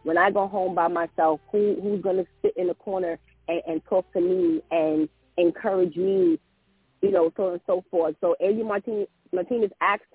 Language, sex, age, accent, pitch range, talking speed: English, female, 30-49, American, 160-205 Hz, 195 wpm